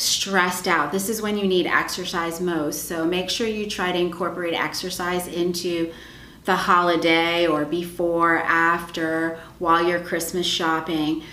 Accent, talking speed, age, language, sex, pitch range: American, 145 wpm, 30-49, English, female, 170-205 Hz